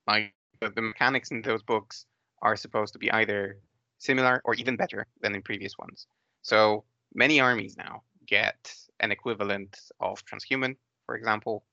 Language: English